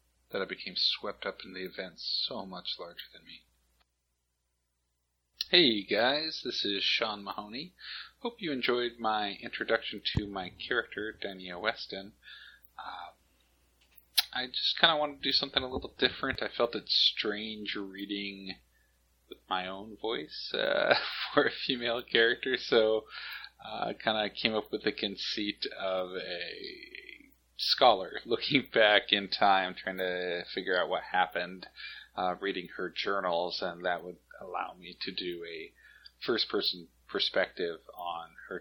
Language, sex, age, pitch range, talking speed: English, male, 40-59, 90-130 Hz, 150 wpm